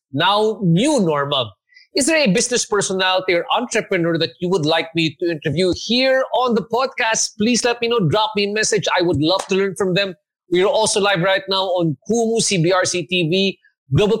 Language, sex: English, male